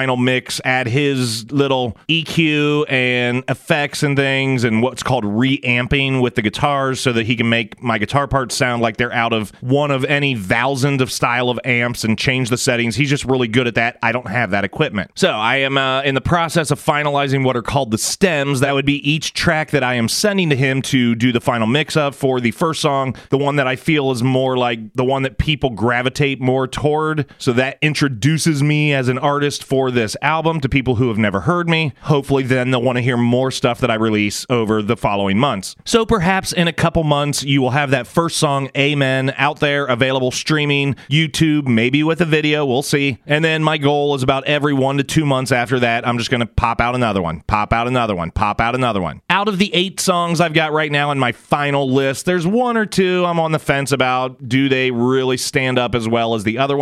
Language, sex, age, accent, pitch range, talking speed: English, male, 30-49, American, 125-150 Hz, 230 wpm